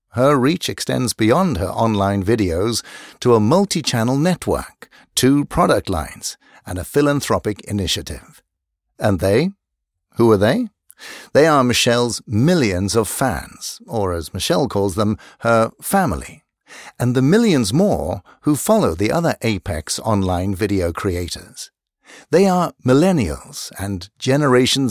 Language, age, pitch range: English, 60-79, 100-145 Hz